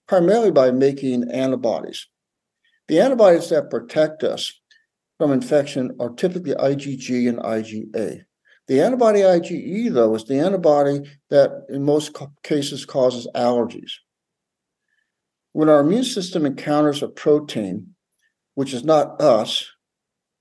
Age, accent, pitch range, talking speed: 60-79, American, 130-155 Hz, 120 wpm